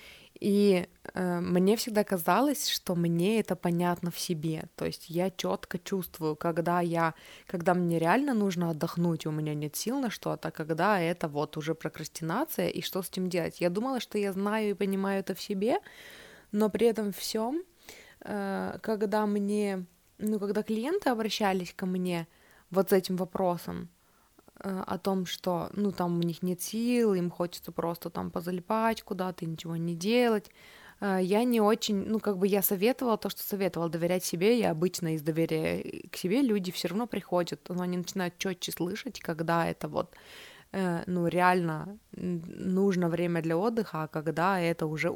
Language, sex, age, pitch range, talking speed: Russian, female, 20-39, 170-210 Hz, 165 wpm